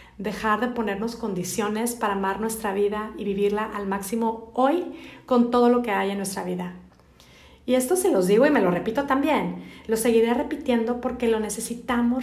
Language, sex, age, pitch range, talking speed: Spanish, female, 40-59, 200-250 Hz, 180 wpm